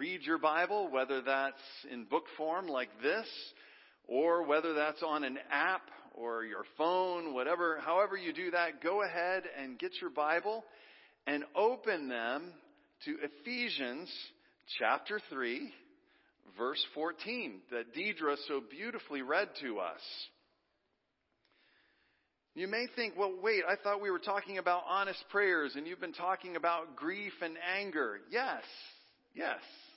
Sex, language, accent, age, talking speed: male, English, American, 40-59, 140 wpm